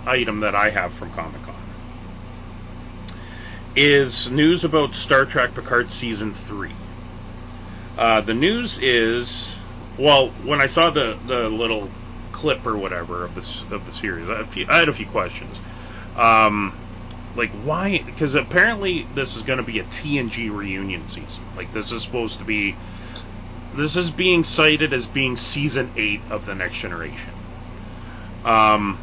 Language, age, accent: English, 30-49, American